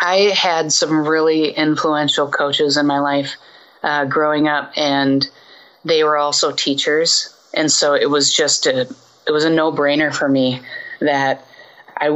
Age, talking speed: 30-49, 160 wpm